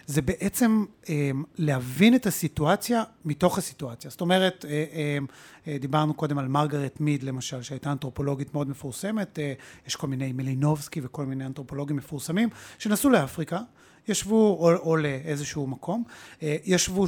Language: Hebrew